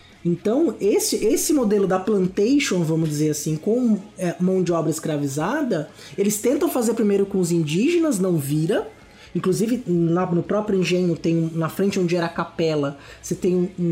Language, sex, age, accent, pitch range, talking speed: Portuguese, male, 20-39, Brazilian, 170-235 Hz, 165 wpm